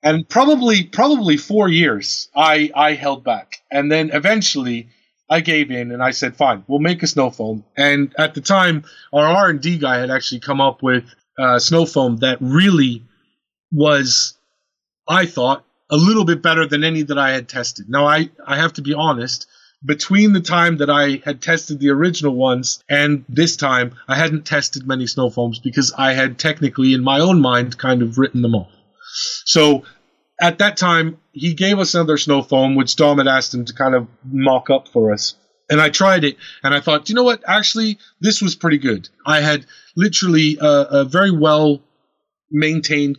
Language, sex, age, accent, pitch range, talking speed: English, male, 30-49, American, 130-165 Hz, 190 wpm